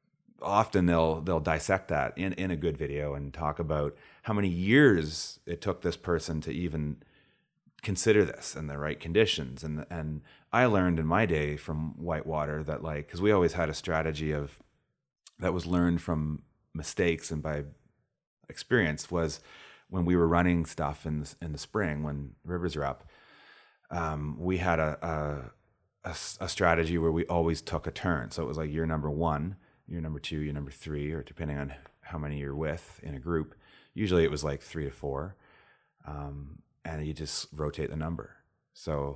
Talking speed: 185 wpm